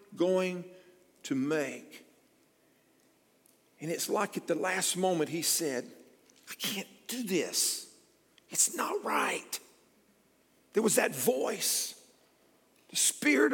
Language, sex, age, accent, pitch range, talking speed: English, male, 50-69, American, 210-280 Hz, 110 wpm